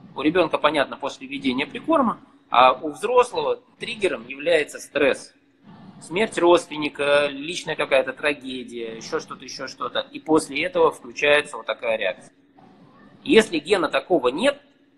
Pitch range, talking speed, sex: 140-240 Hz, 130 wpm, male